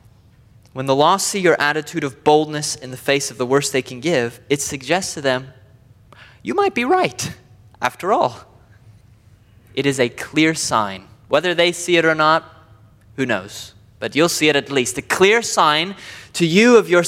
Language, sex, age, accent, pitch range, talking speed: English, male, 20-39, American, 115-165 Hz, 185 wpm